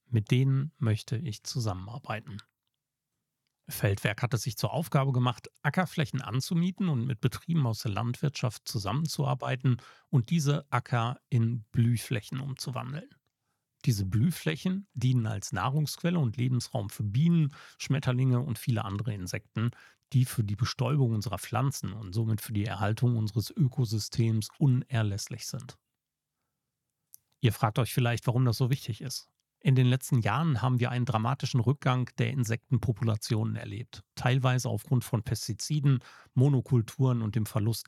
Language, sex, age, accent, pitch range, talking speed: German, male, 40-59, German, 115-135 Hz, 135 wpm